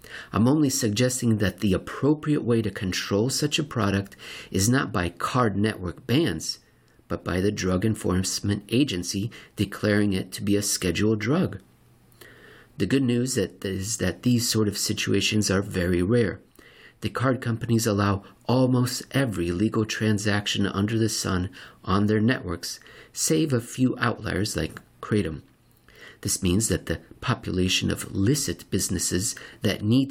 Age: 50-69